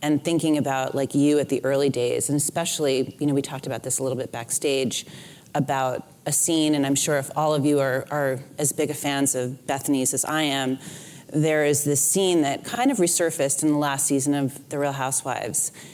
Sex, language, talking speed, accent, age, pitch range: female, English, 220 wpm, American, 30-49, 140-160 Hz